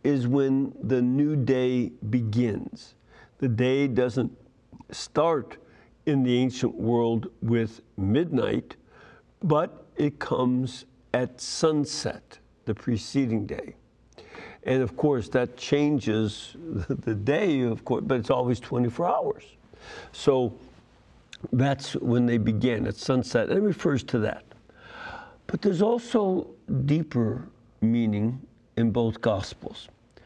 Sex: male